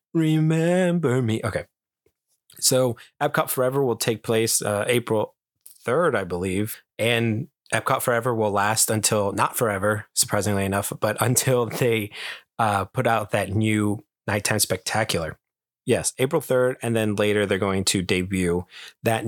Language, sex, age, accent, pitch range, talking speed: English, male, 20-39, American, 100-125 Hz, 140 wpm